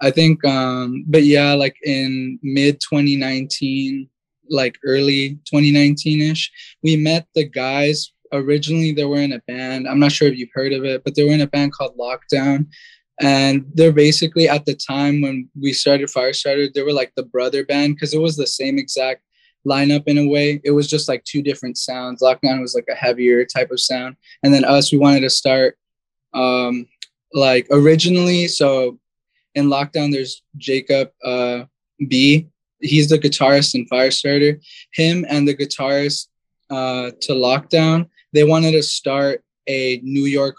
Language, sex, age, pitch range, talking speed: English, male, 10-29, 135-150 Hz, 170 wpm